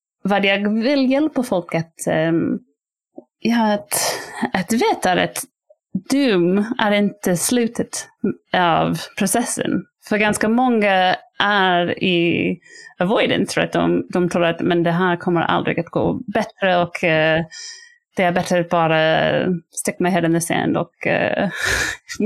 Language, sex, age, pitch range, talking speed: Swedish, female, 30-49, 170-225 Hz, 145 wpm